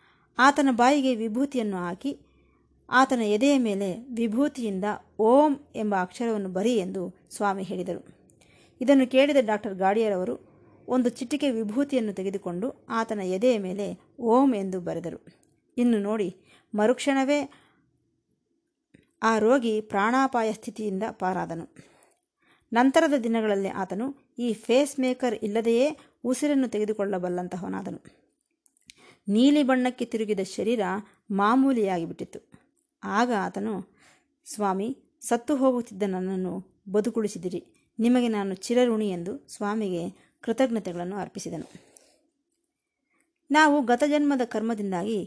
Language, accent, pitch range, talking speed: Kannada, native, 195-260 Hz, 90 wpm